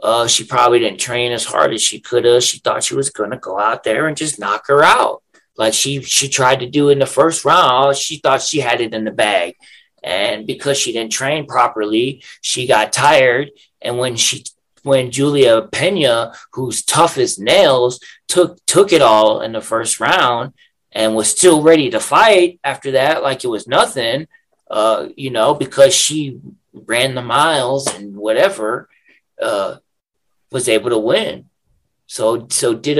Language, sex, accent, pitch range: English, male, American, 110-150 Hz